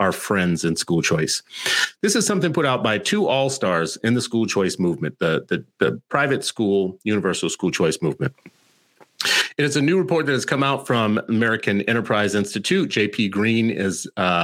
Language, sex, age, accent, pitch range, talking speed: English, male, 40-59, American, 100-140 Hz, 175 wpm